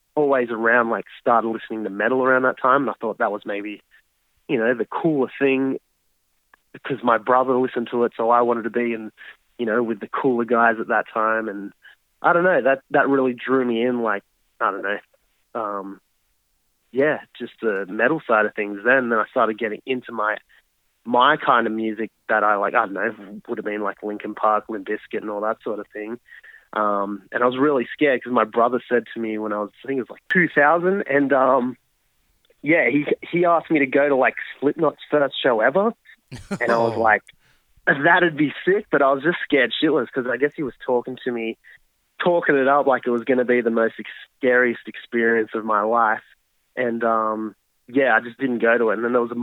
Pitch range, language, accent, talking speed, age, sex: 110-135 Hz, English, Australian, 220 wpm, 20-39, male